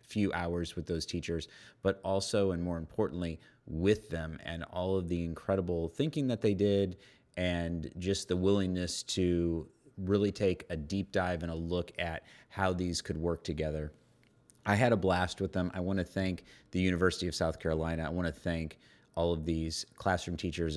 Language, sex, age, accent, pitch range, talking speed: English, male, 30-49, American, 85-105 Hz, 185 wpm